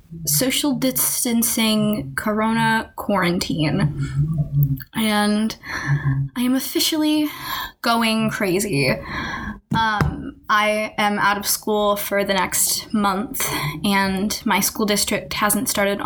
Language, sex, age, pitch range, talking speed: English, female, 10-29, 185-210 Hz, 95 wpm